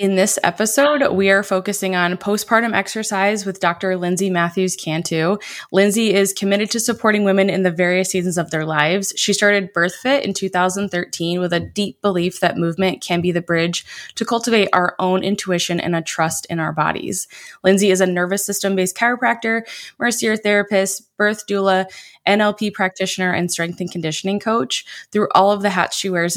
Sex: female